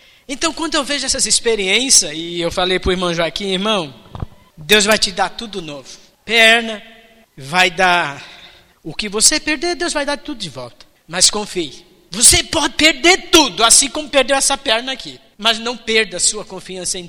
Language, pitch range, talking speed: Portuguese, 195-300 Hz, 180 wpm